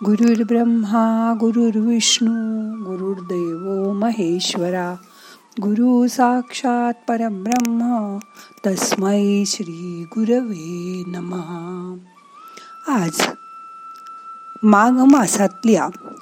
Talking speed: 50 wpm